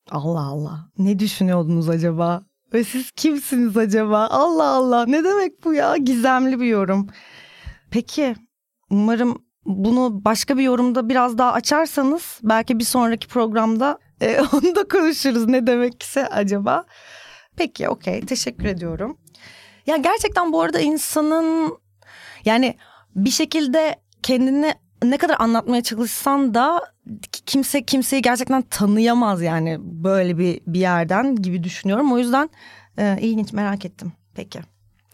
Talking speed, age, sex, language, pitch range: 130 wpm, 30-49, female, Turkish, 205-270 Hz